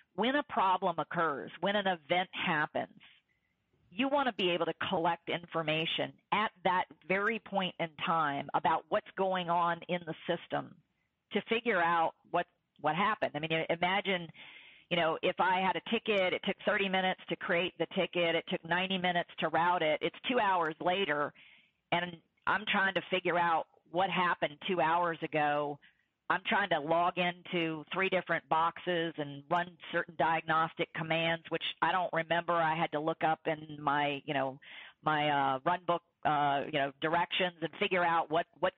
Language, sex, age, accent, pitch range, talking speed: English, female, 40-59, American, 160-185 Hz, 175 wpm